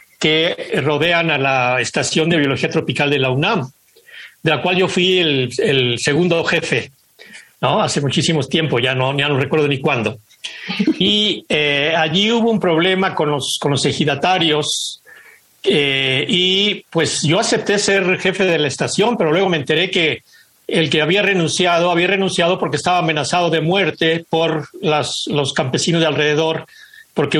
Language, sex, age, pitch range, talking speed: Spanish, male, 60-79, 150-185 Hz, 165 wpm